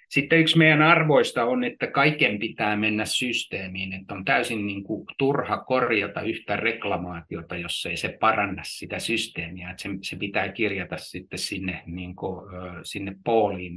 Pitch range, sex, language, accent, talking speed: 95-115 Hz, male, Finnish, native, 125 wpm